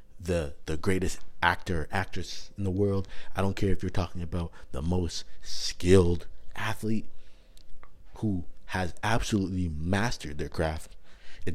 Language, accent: English, American